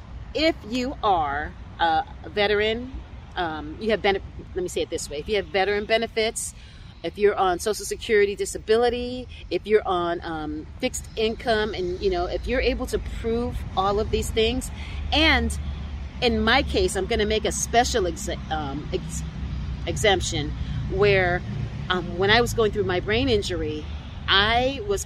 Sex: female